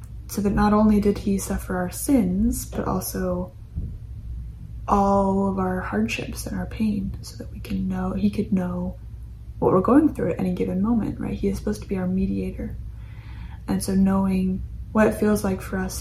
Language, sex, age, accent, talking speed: English, female, 10-29, American, 190 wpm